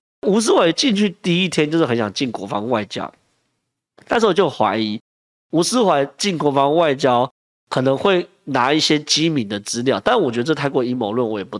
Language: Chinese